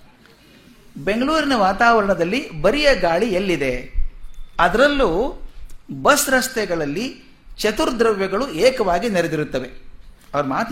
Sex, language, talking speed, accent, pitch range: male, Kannada, 75 wpm, native, 165-235 Hz